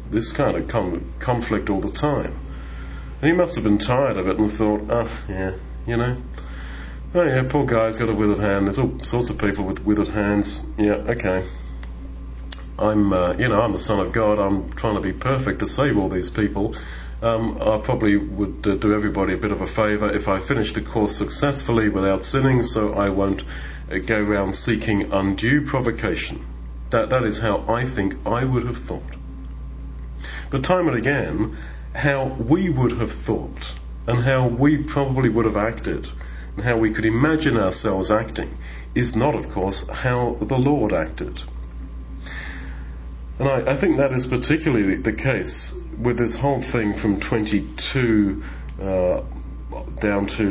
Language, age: English, 40-59